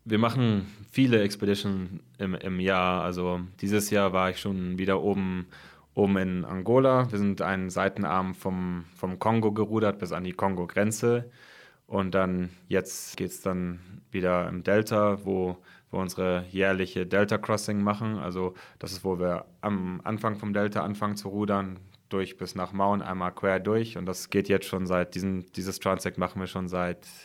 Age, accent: 30-49, German